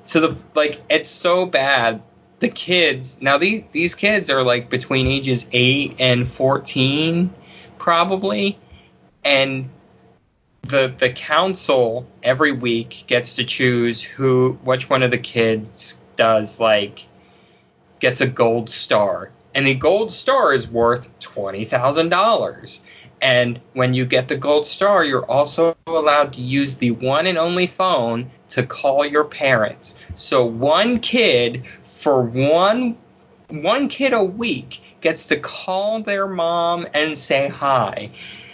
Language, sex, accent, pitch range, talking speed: English, male, American, 125-175 Hz, 135 wpm